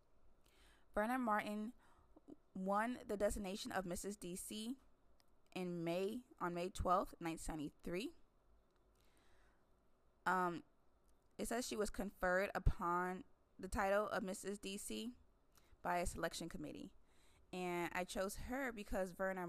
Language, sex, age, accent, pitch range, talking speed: English, female, 20-39, American, 160-205 Hz, 110 wpm